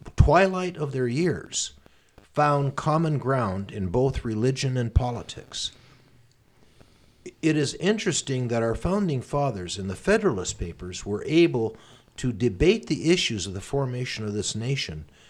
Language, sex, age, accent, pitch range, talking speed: English, male, 50-69, American, 100-140 Hz, 135 wpm